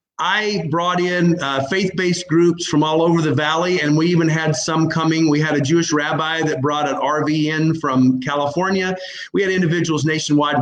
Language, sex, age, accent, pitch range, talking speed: English, male, 40-59, American, 145-170 Hz, 185 wpm